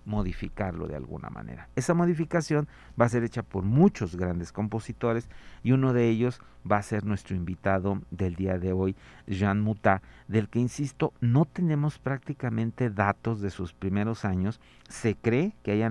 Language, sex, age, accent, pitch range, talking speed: Spanish, male, 50-69, Mexican, 100-125 Hz, 165 wpm